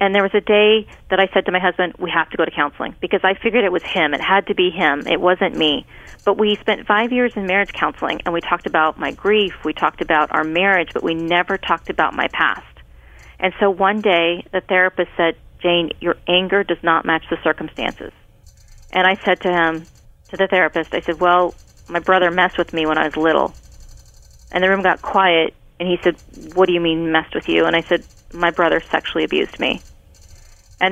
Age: 40-59